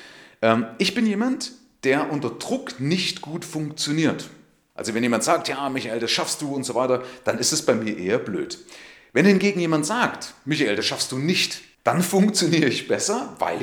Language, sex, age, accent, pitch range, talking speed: German, male, 40-59, German, 130-195 Hz, 185 wpm